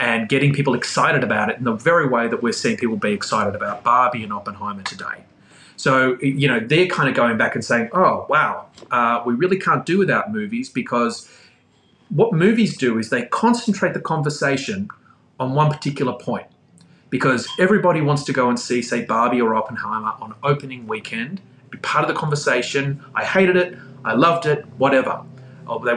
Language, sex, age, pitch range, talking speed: English, male, 30-49, 125-170 Hz, 185 wpm